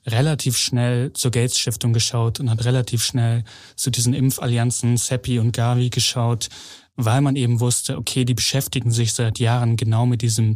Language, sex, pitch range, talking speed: German, male, 115-130 Hz, 165 wpm